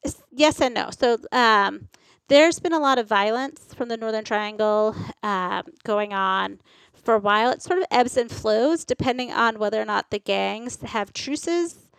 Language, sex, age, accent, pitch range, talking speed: English, female, 30-49, American, 210-260 Hz, 180 wpm